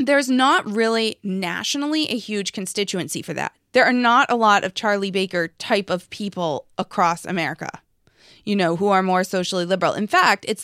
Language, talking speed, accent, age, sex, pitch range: English, 180 wpm, American, 20-39, female, 190-240 Hz